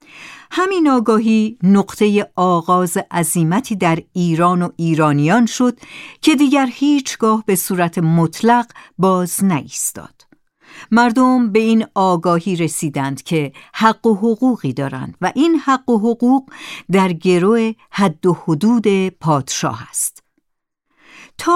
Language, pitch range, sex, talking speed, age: Persian, 175-250 Hz, female, 115 wpm, 50-69